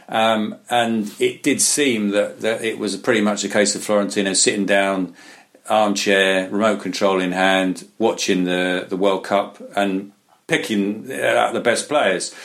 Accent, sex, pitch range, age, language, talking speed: British, male, 95-110 Hz, 40-59, English, 160 wpm